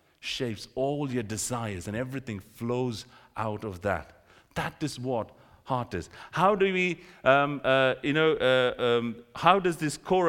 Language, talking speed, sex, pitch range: English, 165 wpm, male, 125-195 Hz